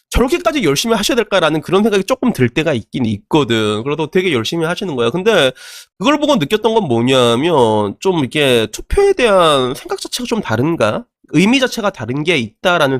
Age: 20-39